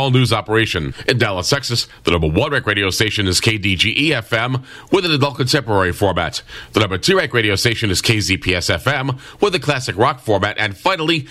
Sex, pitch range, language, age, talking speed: male, 100-130 Hz, English, 40-59, 180 wpm